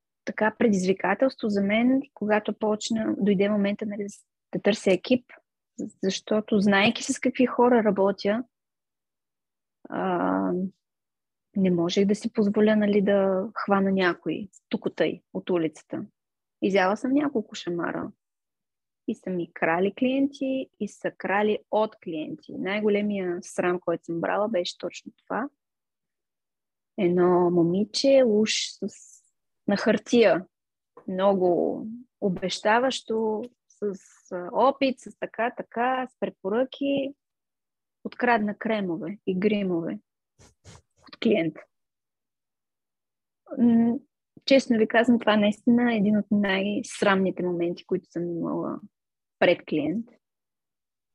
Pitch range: 190-235 Hz